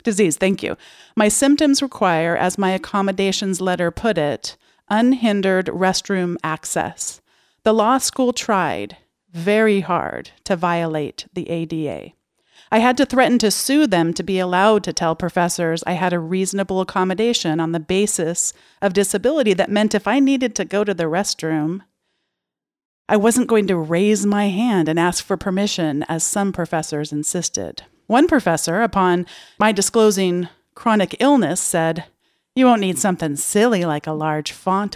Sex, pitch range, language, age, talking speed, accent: female, 170-215 Hz, English, 40-59, 155 wpm, American